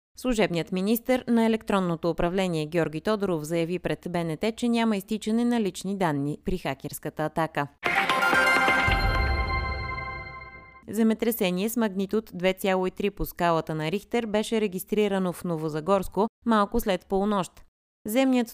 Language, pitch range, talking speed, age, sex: Bulgarian, 160-215 Hz, 115 wpm, 20-39, female